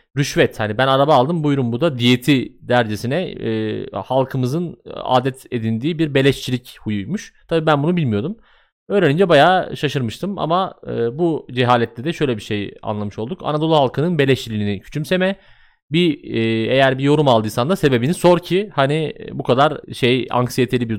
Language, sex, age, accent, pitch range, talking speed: Turkish, male, 30-49, native, 115-160 Hz, 155 wpm